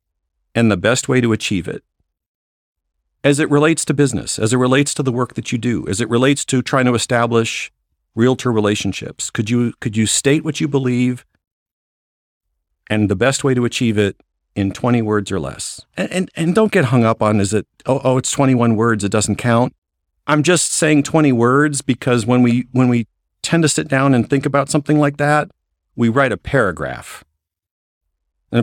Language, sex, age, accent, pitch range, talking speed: English, male, 50-69, American, 95-135 Hz, 195 wpm